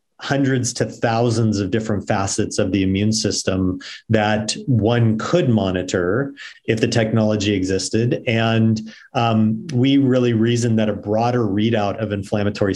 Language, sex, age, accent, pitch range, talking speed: English, male, 40-59, American, 100-115 Hz, 135 wpm